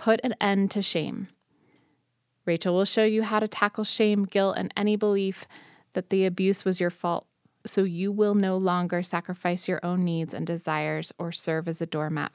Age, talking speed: 20-39, 190 wpm